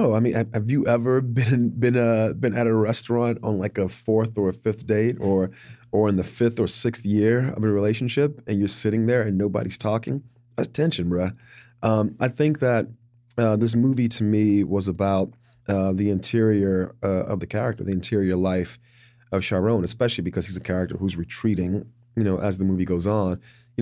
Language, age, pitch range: English, 30-49, 95-120 Hz